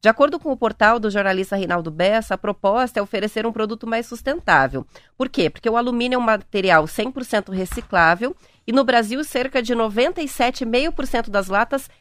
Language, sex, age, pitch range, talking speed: Portuguese, female, 30-49, 195-240 Hz, 175 wpm